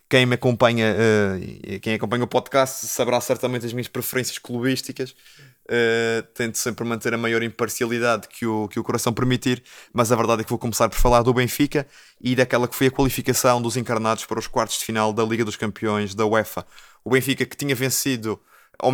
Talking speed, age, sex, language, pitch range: 200 wpm, 20-39, male, Portuguese, 115-130 Hz